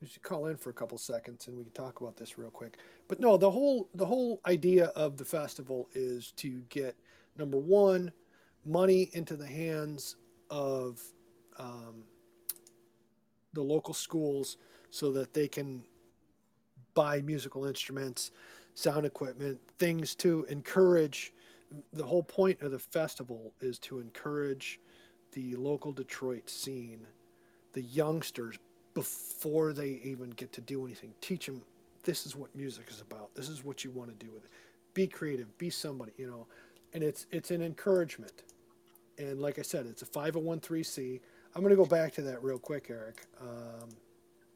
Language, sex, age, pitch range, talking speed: English, male, 40-59, 120-160 Hz, 160 wpm